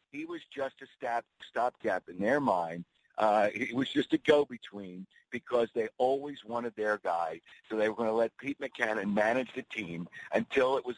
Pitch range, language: 110-135 Hz, English